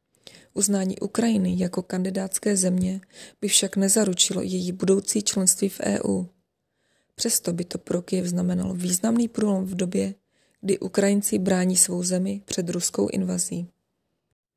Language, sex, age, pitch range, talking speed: Czech, female, 20-39, 175-200 Hz, 130 wpm